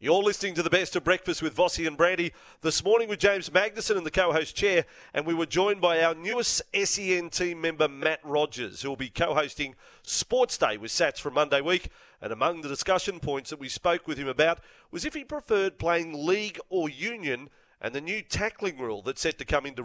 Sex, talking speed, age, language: male, 220 wpm, 40-59, English